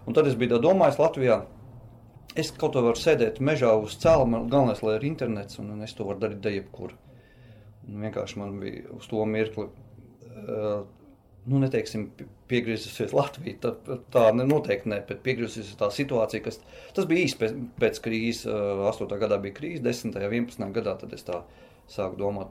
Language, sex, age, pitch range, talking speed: English, male, 30-49, 110-130 Hz, 175 wpm